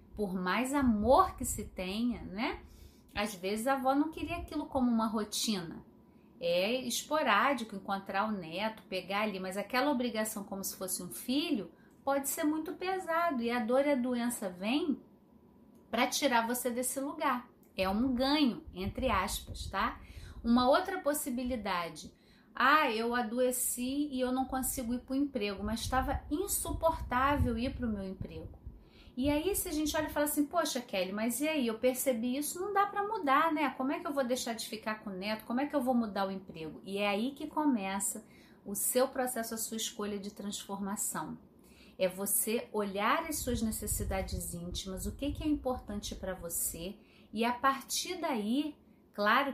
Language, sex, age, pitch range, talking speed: Portuguese, female, 30-49, 205-275 Hz, 175 wpm